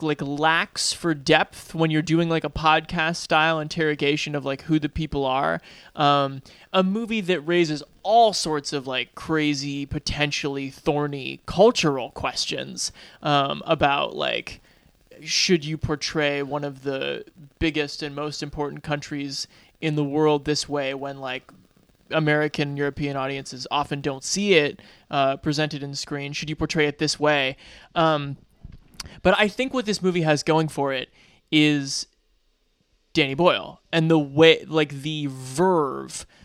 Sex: male